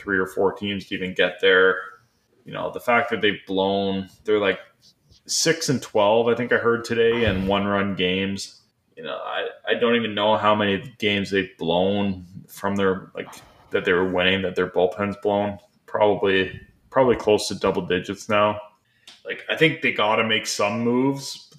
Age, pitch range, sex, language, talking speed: 20-39, 95-115 Hz, male, English, 190 wpm